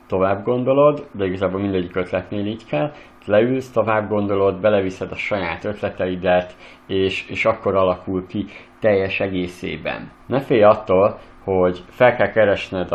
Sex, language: male, Hungarian